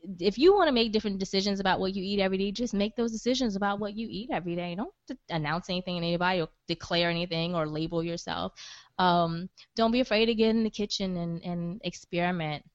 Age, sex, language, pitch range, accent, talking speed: 20-39, female, English, 165-225 Hz, American, 215 wpm